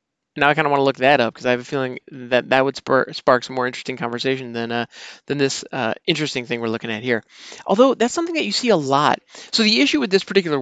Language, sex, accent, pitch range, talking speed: English, male, American, 125-170 Hz, 270 wpm